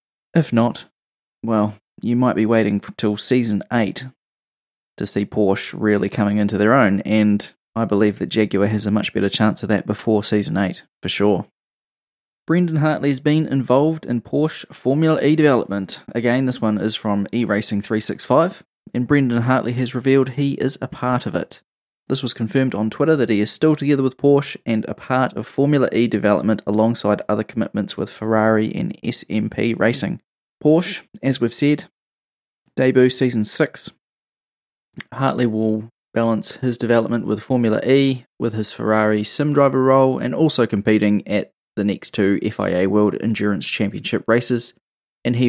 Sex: male